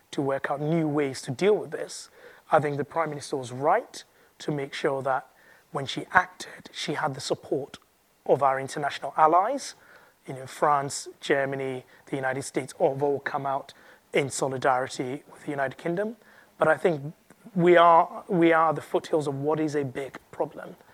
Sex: male